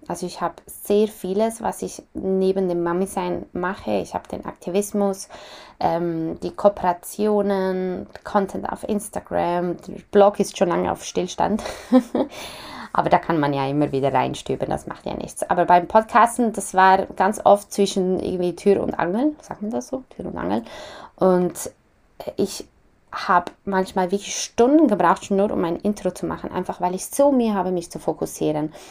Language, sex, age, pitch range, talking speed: German, female, 20-39, 180-210 Hz, 170 wpm